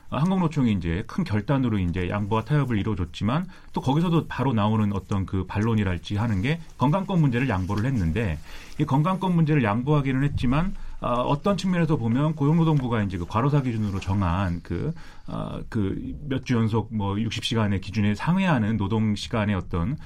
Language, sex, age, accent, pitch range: Korean, male, 30-49, native, 105-155 Hz